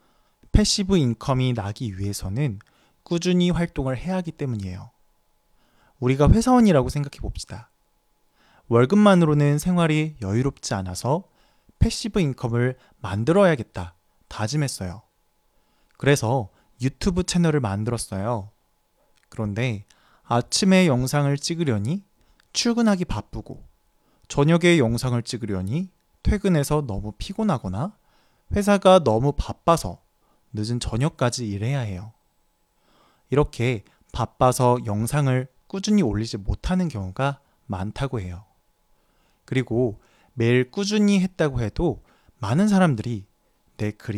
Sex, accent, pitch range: male, Korean, 105-165 Hz